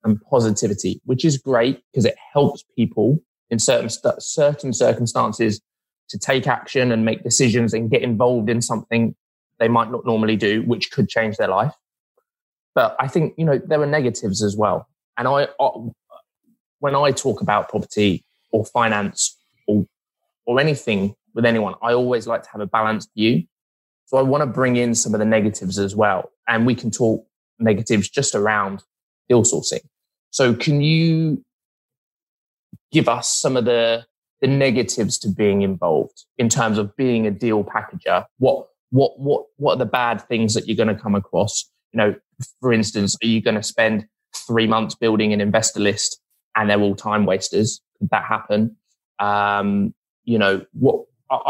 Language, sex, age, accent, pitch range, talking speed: English, male, 20-39, British, 105-125 Hz, 170 wpm